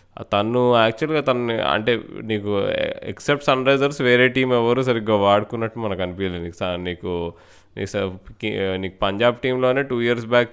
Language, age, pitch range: Telugu, 20-39, 95-110 Hz